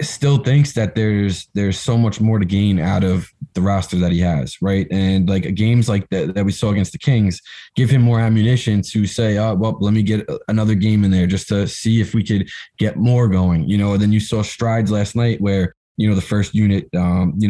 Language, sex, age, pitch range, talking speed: English, male, 20-39, 100-115 Hz, 240 wpm